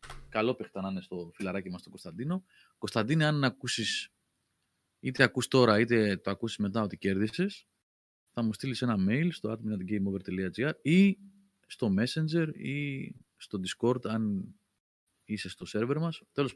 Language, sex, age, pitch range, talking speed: Greek, male, 30-49, 95-130 Hz, 140 wpm